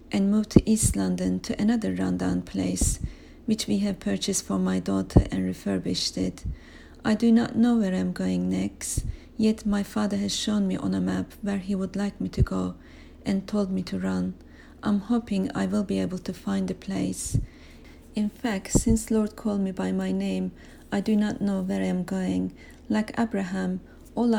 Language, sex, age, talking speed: English, female, 40-59, 195 wpm